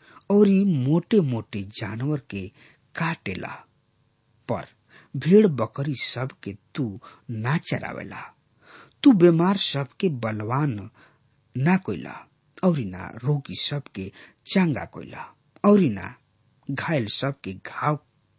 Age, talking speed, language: 50-69, 110 wpm, English